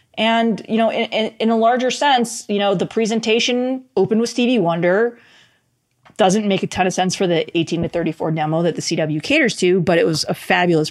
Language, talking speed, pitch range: English, 210 wpm, 170-225 Hz